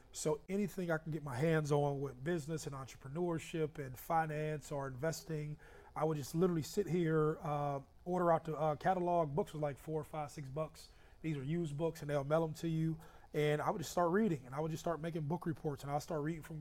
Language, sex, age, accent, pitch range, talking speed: English, male, 30-49, American, 145-160 Hz, 235 wpm